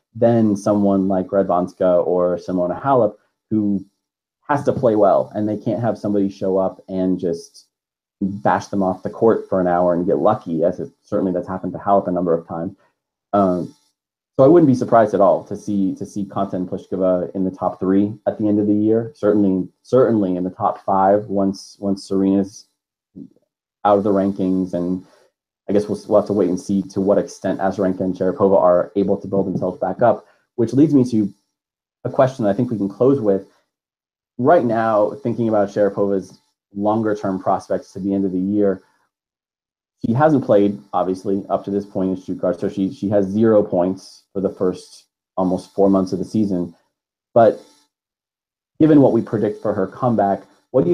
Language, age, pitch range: English, 30-49, 95-105 Hz